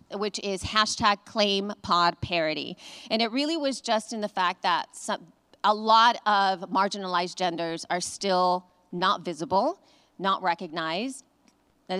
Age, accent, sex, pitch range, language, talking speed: 40-59, American, female, 180-220 Hz, English, 140 wpm